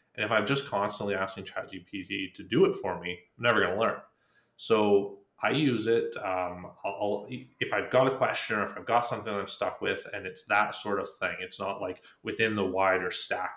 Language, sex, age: English, male, 30-49